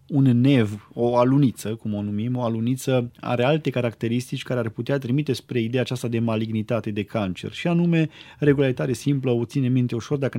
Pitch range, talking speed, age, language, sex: 115-135 Hz, 185 wpm, 20-39, Romanian, male